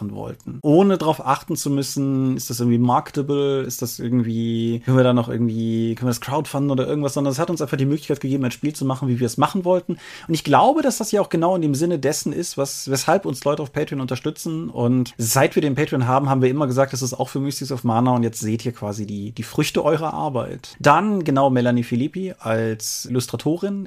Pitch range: 120-145 Hz